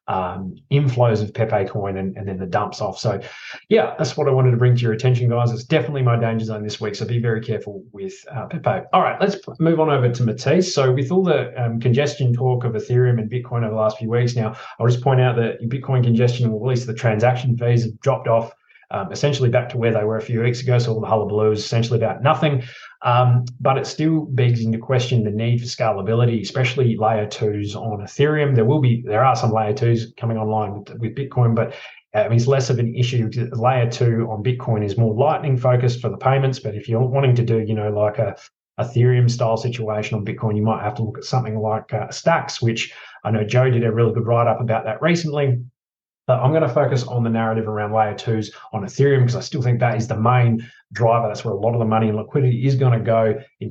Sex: male